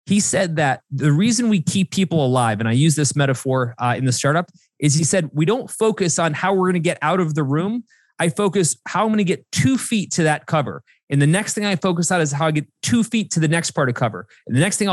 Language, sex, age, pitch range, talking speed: English, male, 30-49, 140-195 Hz, 275 wpm